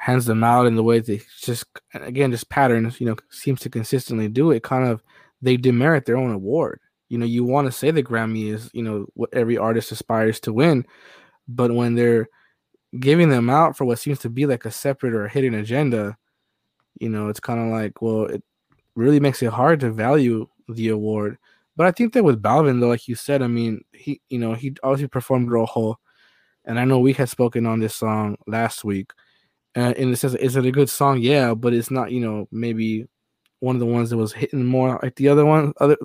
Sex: male